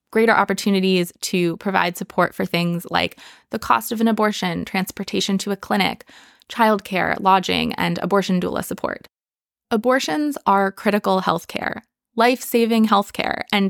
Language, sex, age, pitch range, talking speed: English, female, 20-39, 185-225 Hz, 135 wpm